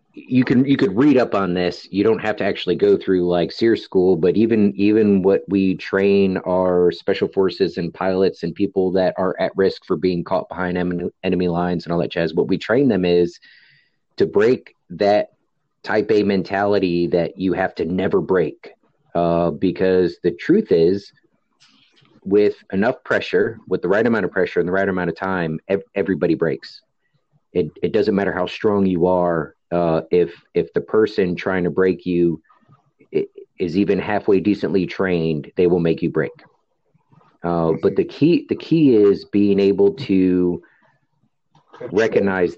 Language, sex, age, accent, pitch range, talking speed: English, male, 30-49, American, 85-100 Hz, 175 wpm